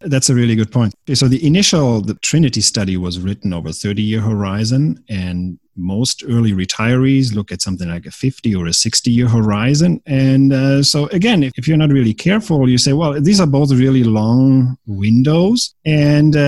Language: English